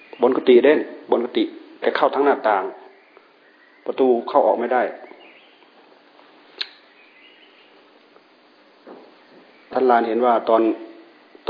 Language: Thai